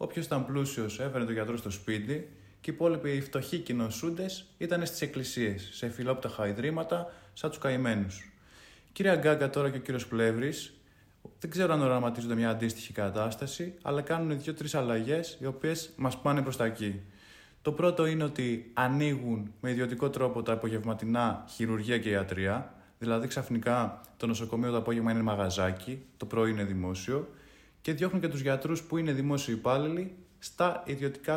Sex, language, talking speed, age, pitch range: male, Greek, 160 wpm, 20-39, 115-150 Hz